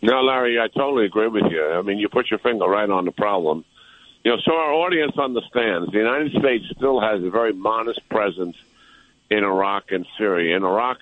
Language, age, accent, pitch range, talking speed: English, 60-79, American, 95-115 Hz, 205 wpm